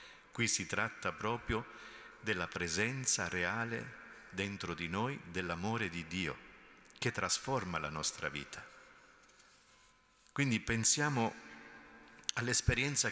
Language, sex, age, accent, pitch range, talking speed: Italian, male, 50-69, native, 100-135 Hz, 95 wpm